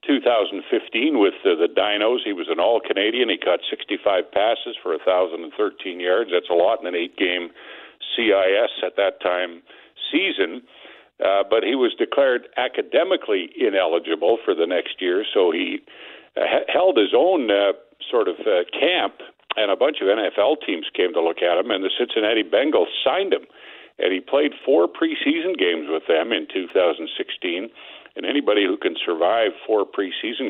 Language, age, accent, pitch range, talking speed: English, 50-69, American, 350-445 Hz, 165 wpm